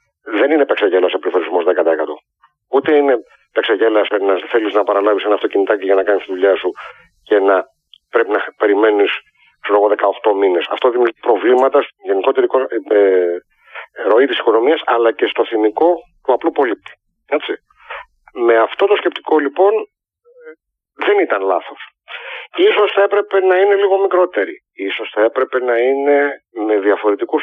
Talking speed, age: 145 wpm, 40-59